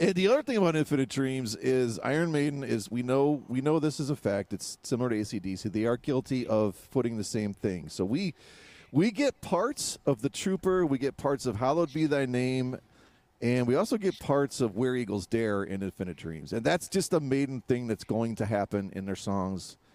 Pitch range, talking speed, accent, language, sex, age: 110-145 Hz, 215 wpm, American, English, male, 40-59